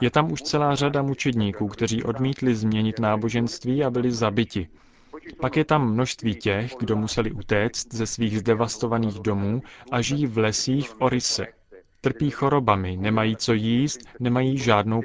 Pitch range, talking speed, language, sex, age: 110-135 Hz, 150 wpm, Czech, male, 30-49